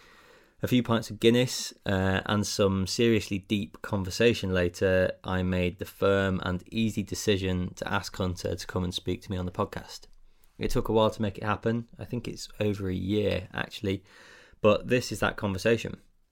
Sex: male